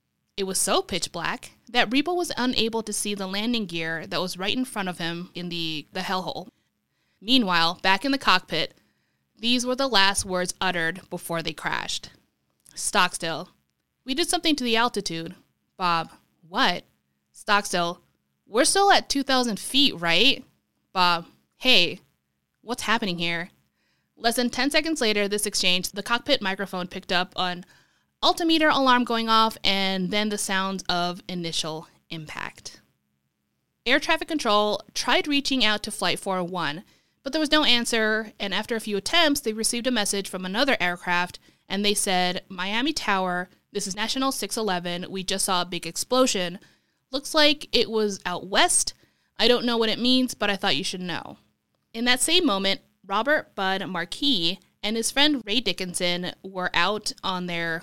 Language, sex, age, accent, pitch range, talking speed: English, female, 20-39, American, 180-245 Hz, 165 wpm